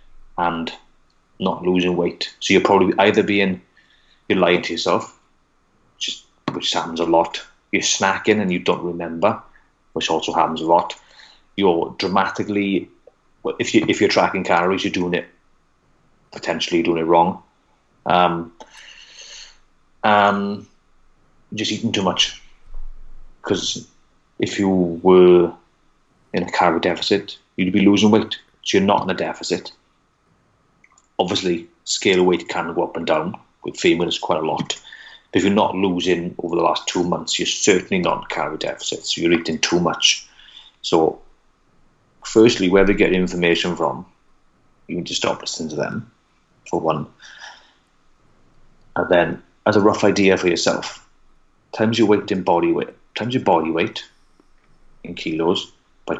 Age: 30-49